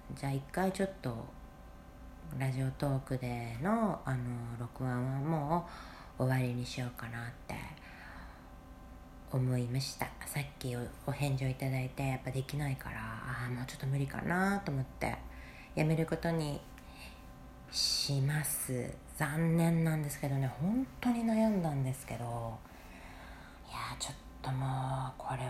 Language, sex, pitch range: Japanese, female, 120-155 Hz